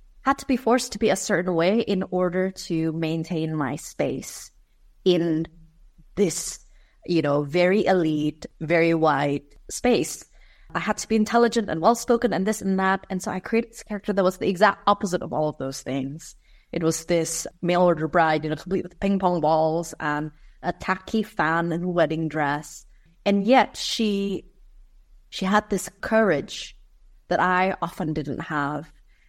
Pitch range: 155-200 Hz